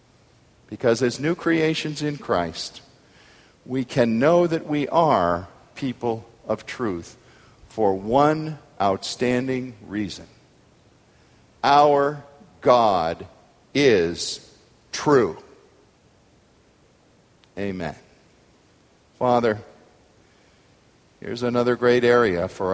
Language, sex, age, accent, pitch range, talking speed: English, male, 50-69, American, 100-120 Hz, 80 wpm